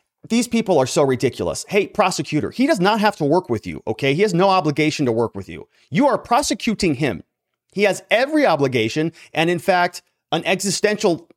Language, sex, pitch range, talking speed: English, male, 135-190 Hz, 195 wpm